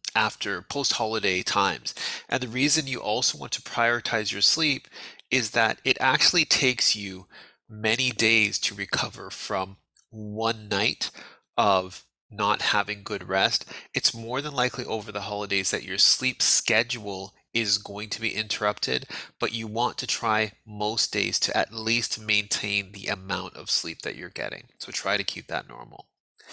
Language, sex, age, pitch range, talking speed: English, male, 30-49, 105-125 Hz, 160 wpm